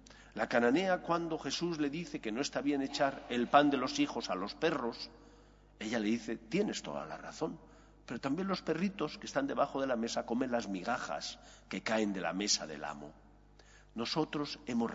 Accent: Spanish